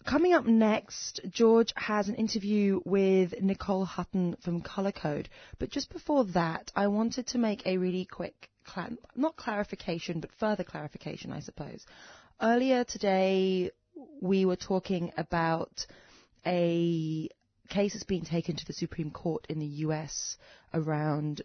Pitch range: 160-195 Hz